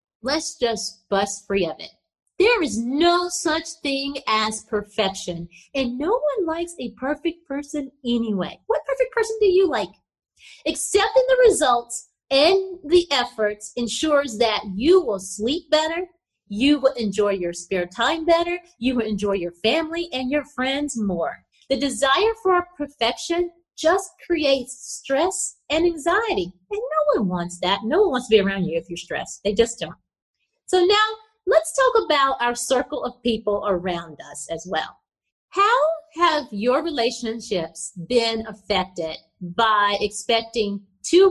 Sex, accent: female, American